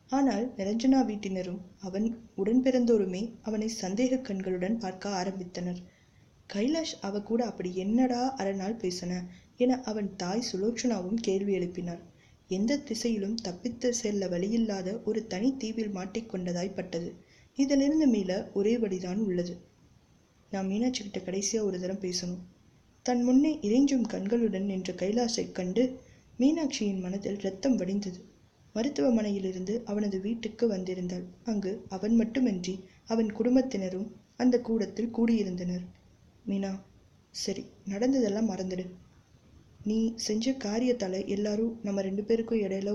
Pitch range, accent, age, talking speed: 185-230 Hz, native, 20-39, 110 wpm